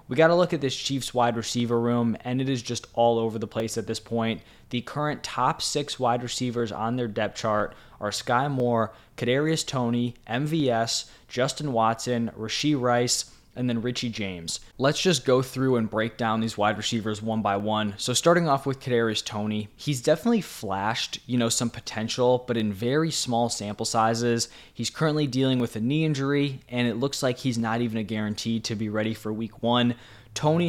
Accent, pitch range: American, 115-140 Hz